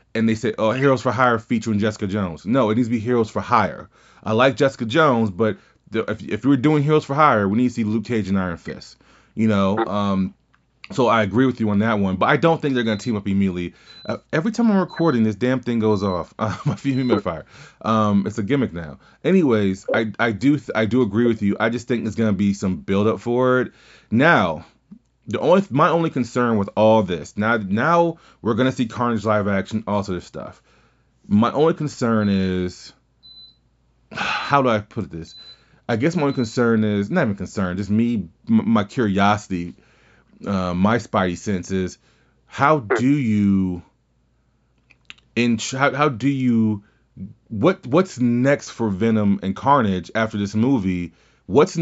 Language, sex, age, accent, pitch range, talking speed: English, male, 30-49, American, 100-125 Hz, 190 wpm